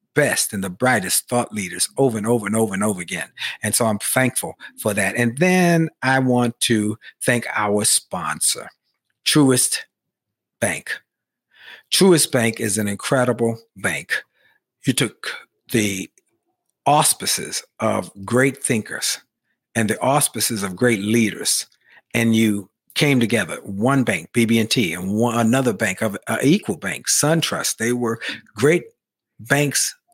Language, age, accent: English, 50-69, American